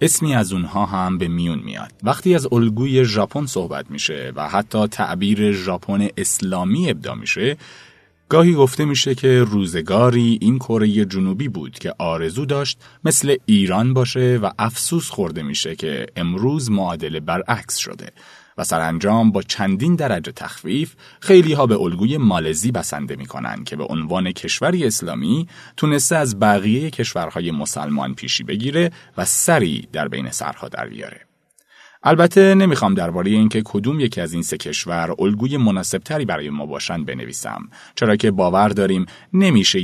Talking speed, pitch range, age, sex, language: 150 wpm, 100-145 Hz, 30-49, male, Persian